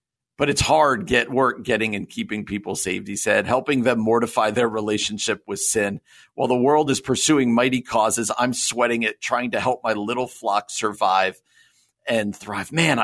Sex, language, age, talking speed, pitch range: male, English, 50-69, 180 wpm, 115-160 Hz